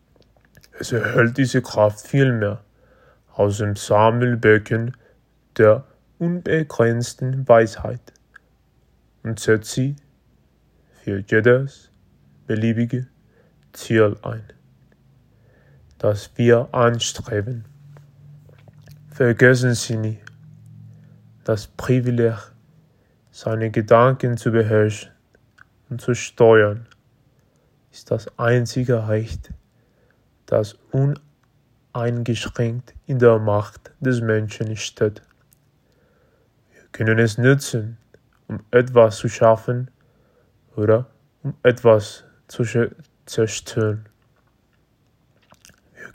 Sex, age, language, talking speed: male, 20-39, German, 80 wpm